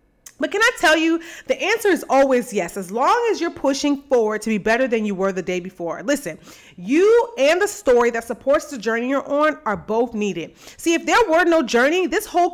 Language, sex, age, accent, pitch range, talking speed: English, female, 30-49, American, 225-310 Hz, 225 wpm